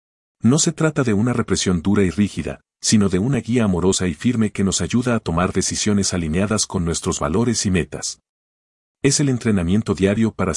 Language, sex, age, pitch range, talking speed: Spanish, male, 50-69, 85-115 Hz, 185 wpm